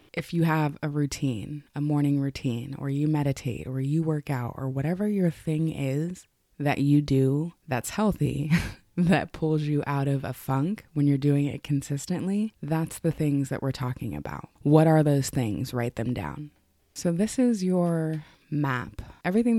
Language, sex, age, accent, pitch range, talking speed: English, female, 20-39, American, 135-155 Hz, 175 wpm